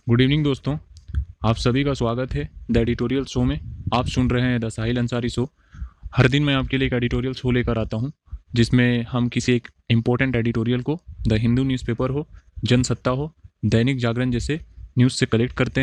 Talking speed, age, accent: 195 wpm, 20-39, native